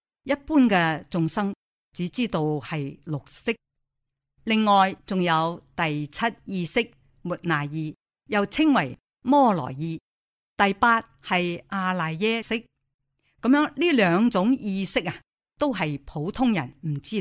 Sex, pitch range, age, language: female, 150-215 Hz, 50-69, Chinese